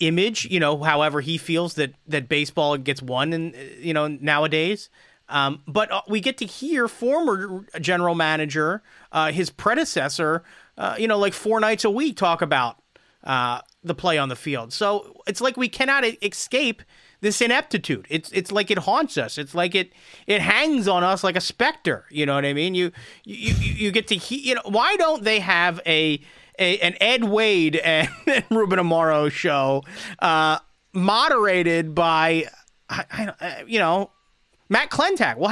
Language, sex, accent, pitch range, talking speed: English, male, American, 155-220 Hz, 175 wpm